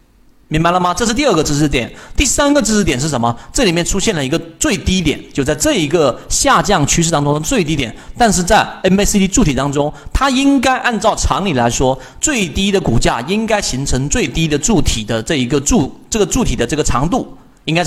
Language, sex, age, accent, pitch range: Chinese, male, 40-59, native, 130-200 Hz